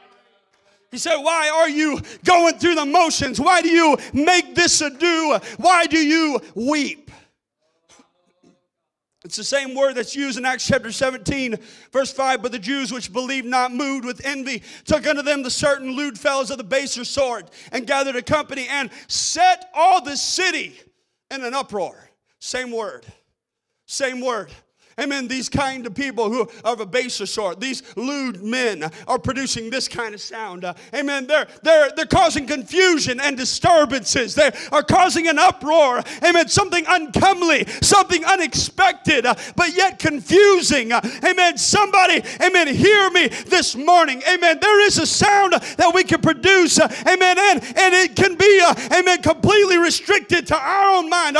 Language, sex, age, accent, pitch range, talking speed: English, male, 40-59, American, 255-350 Hz, 160 wpm